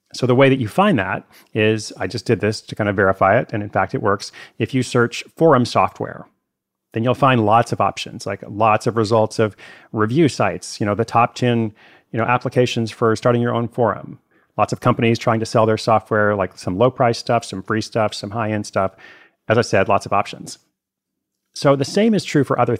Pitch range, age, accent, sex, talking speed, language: 105-125 Hz, 40-59, American, male, 225 wpm, English